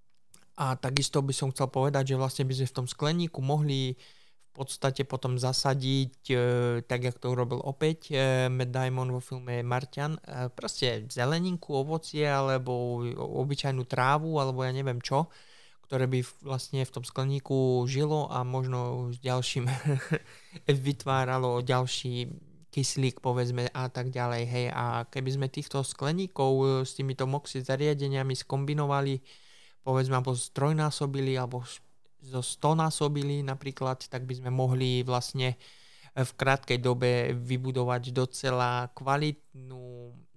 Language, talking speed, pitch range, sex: Slovak, 130 wpm, 125-140 Hz, male